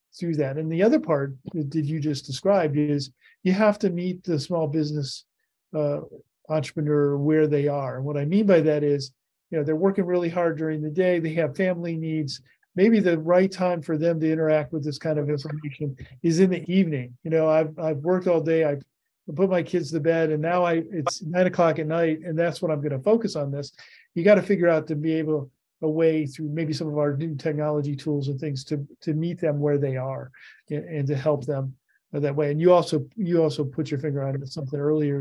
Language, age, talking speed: English, 40-59, 230 wpm